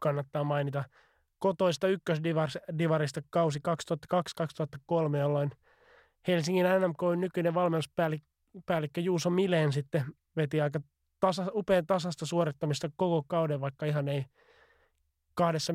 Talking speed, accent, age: 100 wpm, native, 20-39